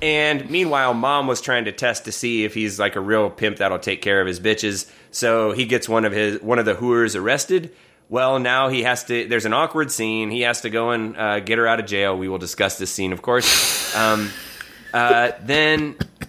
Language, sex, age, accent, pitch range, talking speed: English, male, 20-39, American, 105-130 Hz, 230 wpm